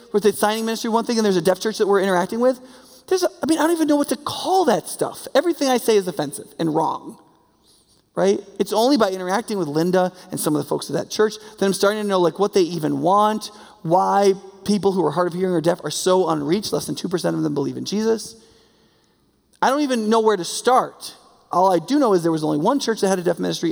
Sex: male